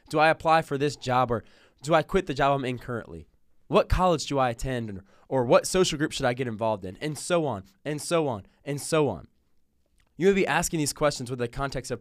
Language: English